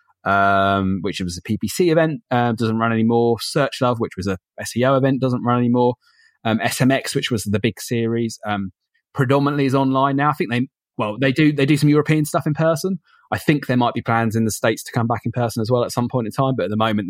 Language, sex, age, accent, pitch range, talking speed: English, male, 20-39, British, 110-135 Hz, 245 wpm